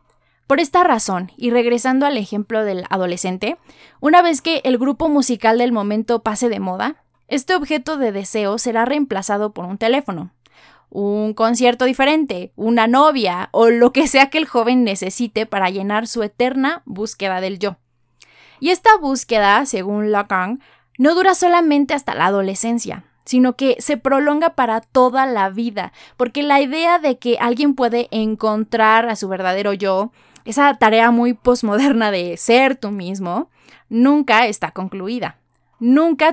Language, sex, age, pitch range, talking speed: Spanish, female, 20-39, 210-275 Hz, 150 wpm